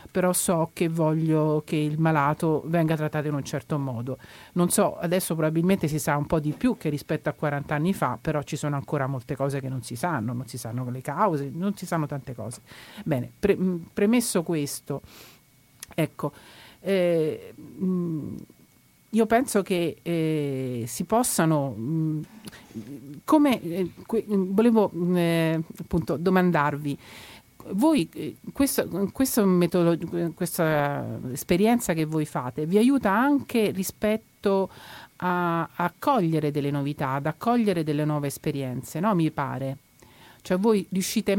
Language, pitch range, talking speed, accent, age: Italian, 145-185 Hz, 130 wpm, native, 50-69